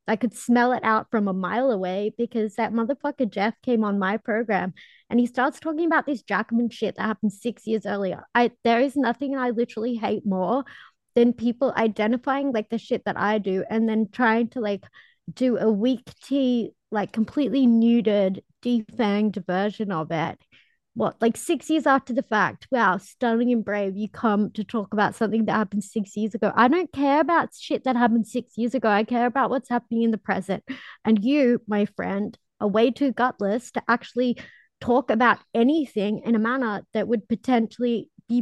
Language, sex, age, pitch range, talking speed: English, female, 20-39, 215-255 Hz, 190 wpm